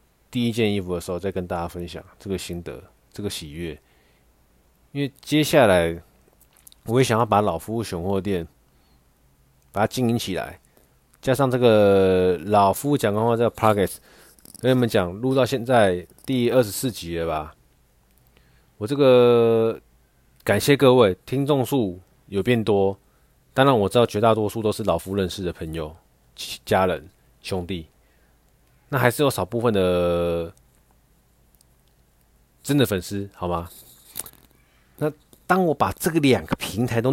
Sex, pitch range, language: male, 85-115 Hz, Chinese